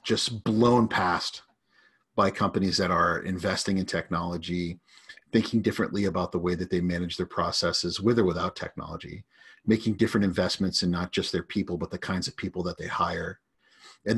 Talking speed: 175 wpm